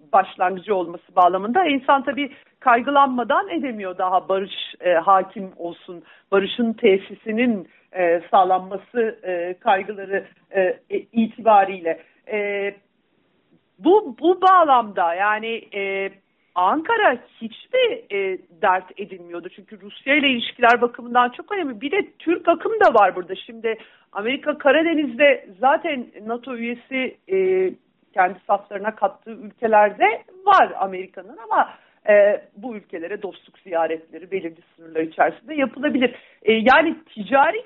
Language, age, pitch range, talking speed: Turkish, 50-69, 195-290 Hz, 115 wpm